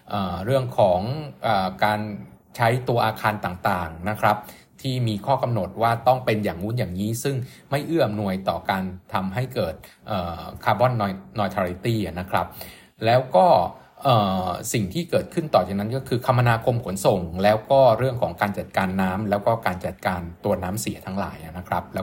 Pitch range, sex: 95-125 Hz, male